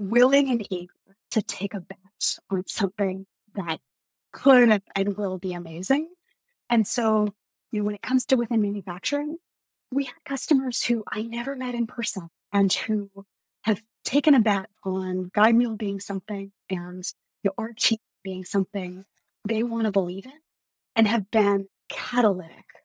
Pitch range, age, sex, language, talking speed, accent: 195-240 Hz, 30-49, female, English, 160 wpm, American